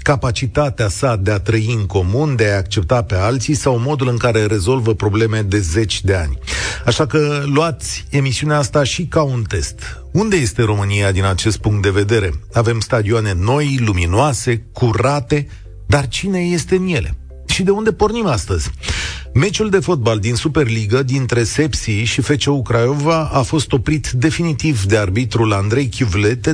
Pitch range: 105-155 Hz